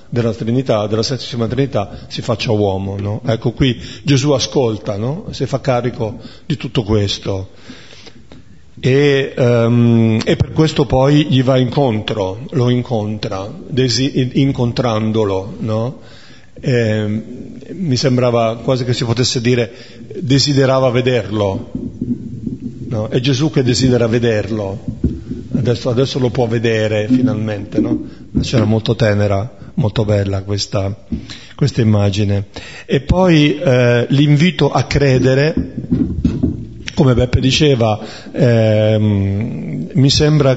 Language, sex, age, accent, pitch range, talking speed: Italian, male, 50-69, native, 110-135 Hz, 115 wpm